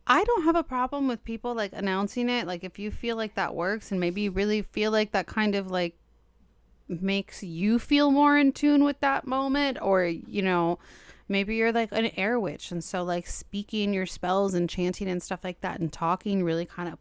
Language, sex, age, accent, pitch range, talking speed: English, female, 30-49, American, 180-225 Hz, 220 wpm